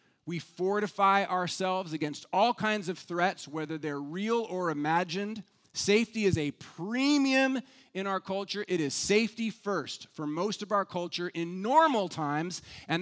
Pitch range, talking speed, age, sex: 160-210 Hz, 150 wpm, 30-49, male